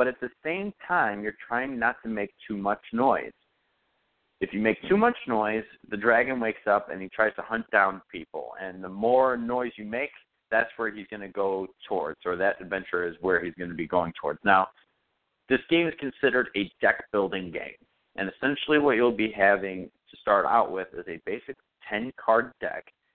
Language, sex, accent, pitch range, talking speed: English, male, American, 100-125 Hz, 200 wpm